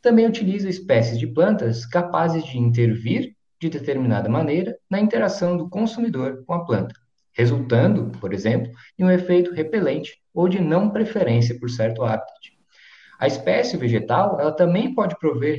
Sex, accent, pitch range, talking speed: male, Brazilian, 120-190 Hz, 150 wpm